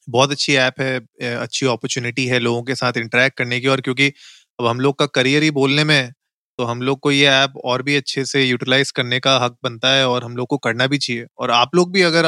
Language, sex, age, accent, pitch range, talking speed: Hindi, male, 30-49, native, 125-145 Hz, 255 wpm